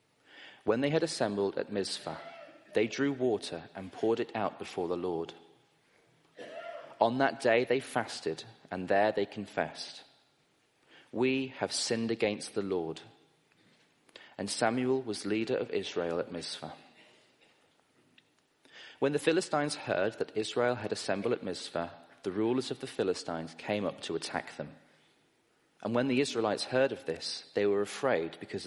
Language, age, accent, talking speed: English, 30-49, British, 145 wpm